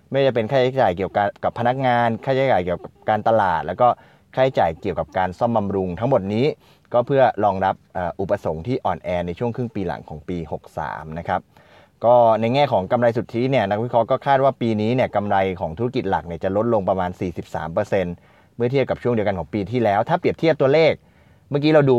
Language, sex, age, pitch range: Thai, male, 20-39, 95-125 Hz